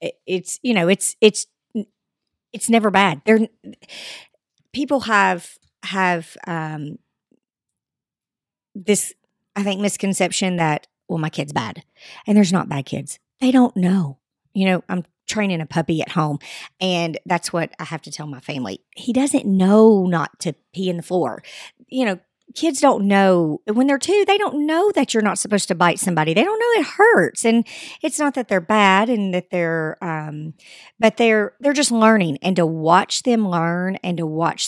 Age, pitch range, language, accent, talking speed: 50-69, 165-215 Hz, English, American, 175 wpm